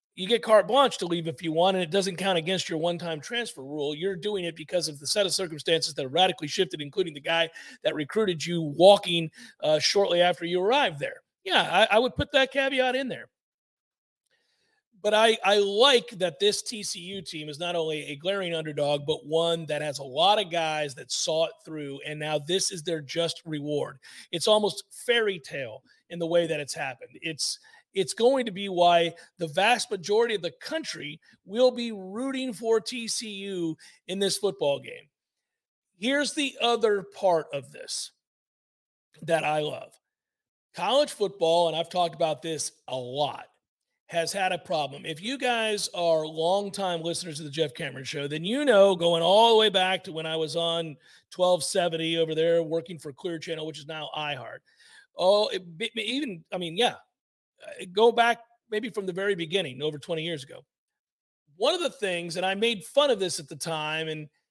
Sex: male